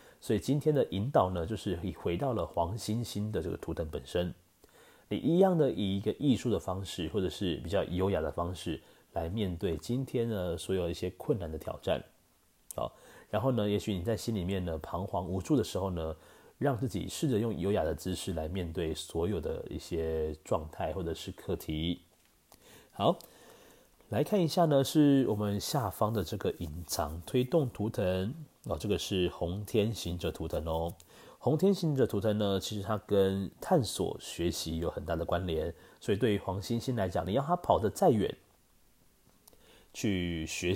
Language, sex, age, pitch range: Chinese, male, 30-49, 85-115 Hz